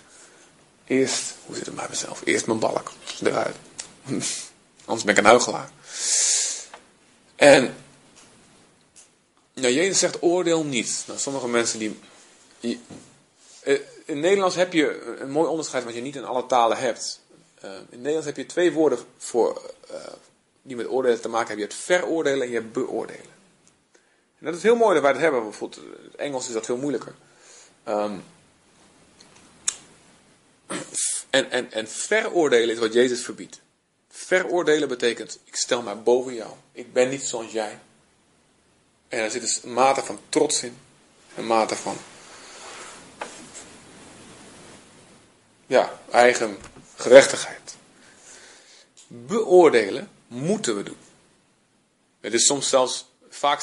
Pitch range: 120-175 Hz